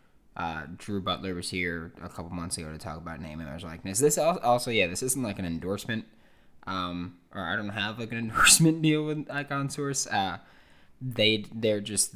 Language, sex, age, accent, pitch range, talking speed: English, male, 20-39, American, 85-105 Hz, 205 wpm